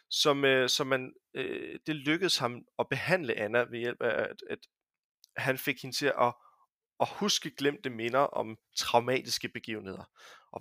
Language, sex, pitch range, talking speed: Danish, male, 120-155 Hz, 165 wpm